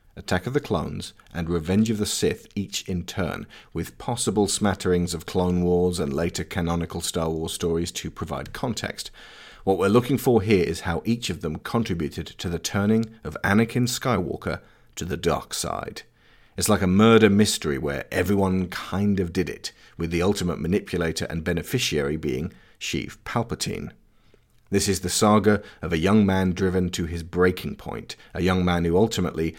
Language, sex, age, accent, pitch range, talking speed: English, male, 40-59, British, 85-105 Hz, 175 wpm